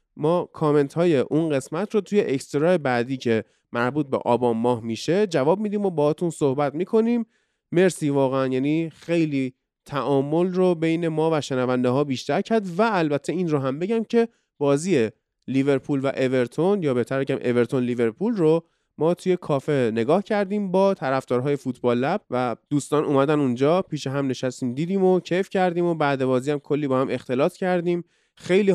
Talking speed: 170 wpm